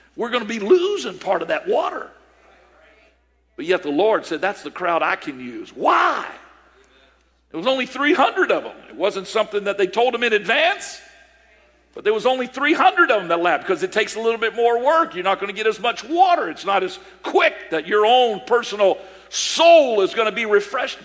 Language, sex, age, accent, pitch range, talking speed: English, male, 50-69, American, 180-235 Hz, 215 wpm